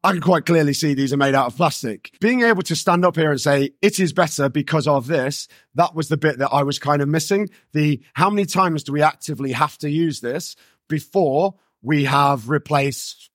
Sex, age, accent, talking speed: male, 30-49, British, 225 wpm